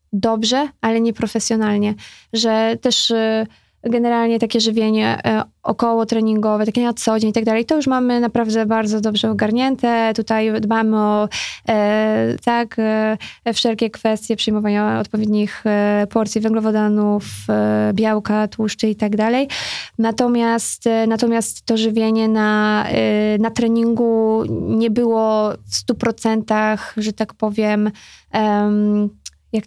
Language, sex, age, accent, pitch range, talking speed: Polish, female, 20-39, native, 210-230 Hz, 110 wpm